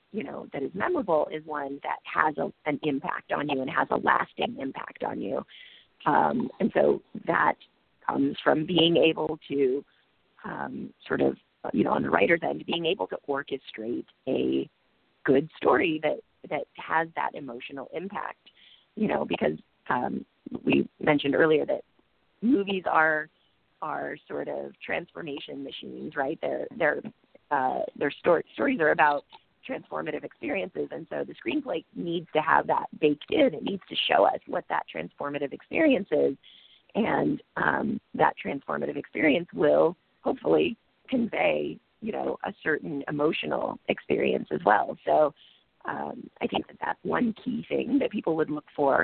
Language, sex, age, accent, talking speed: English, female, 30-49, American, 160 wpm